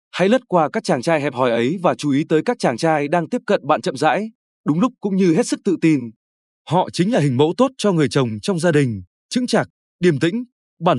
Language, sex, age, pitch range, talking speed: Vietnamese, male, 20-39, 145-205 Hz, 255 wpm